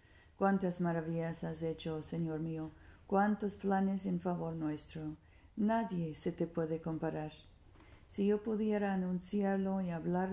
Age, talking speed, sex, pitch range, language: 50-69, 130 wpm, female, 155-195 Hz, Spanish